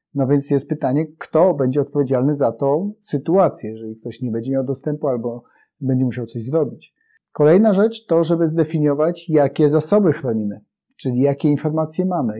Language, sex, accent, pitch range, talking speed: Polish, male, native, 130-180 Hz, 160 wpm